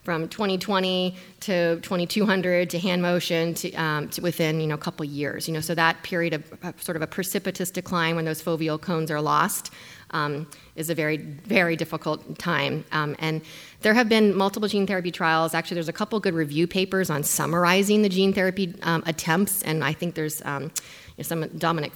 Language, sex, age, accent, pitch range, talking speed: English, female, 30-49, American, 160-185 Hz, 200 wpm